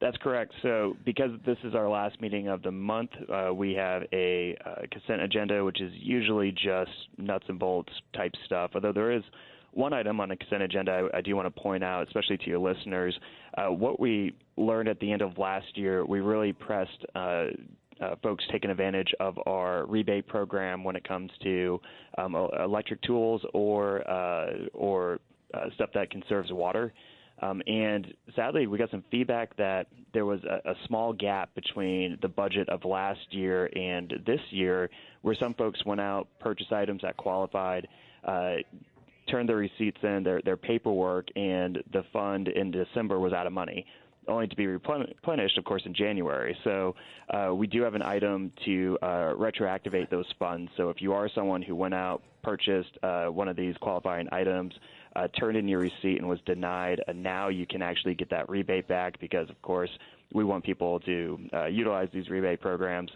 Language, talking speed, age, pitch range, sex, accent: English, 185 wpm, 30-49, 90-105 Hz, male, American